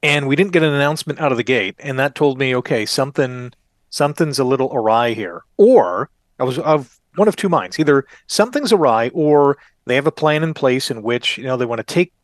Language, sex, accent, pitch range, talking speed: English, male, American, 130-165 Hz, 230 wpm